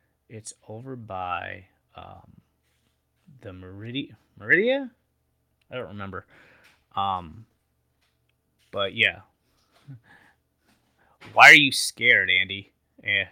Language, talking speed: English, 85 wpm